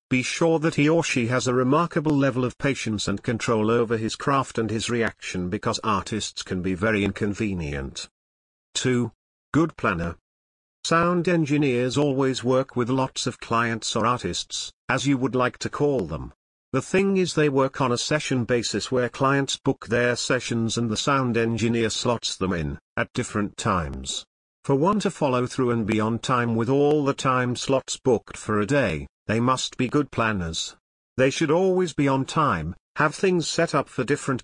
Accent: British